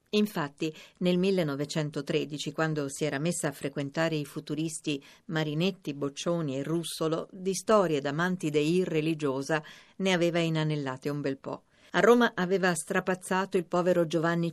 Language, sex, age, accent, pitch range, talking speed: Italian, female, 50-69, native, 145-185 Hz, 130 wpm